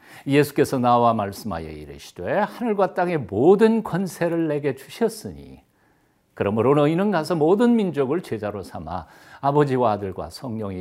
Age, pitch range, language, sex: 60-79, 110-185 Hz, Korean, male